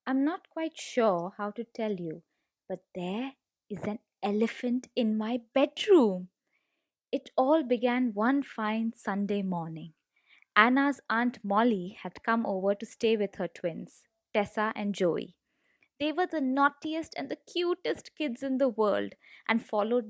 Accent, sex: Indian, female